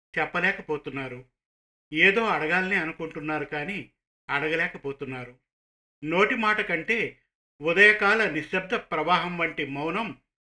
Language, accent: Telugu, native